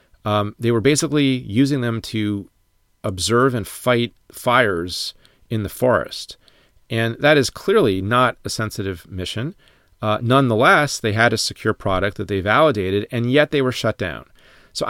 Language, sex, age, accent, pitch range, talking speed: English, male, 40-59, American, 105-130 Hz, 155 wpm